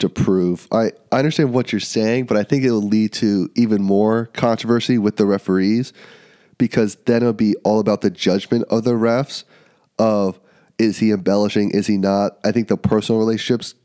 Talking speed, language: 190 wpm, English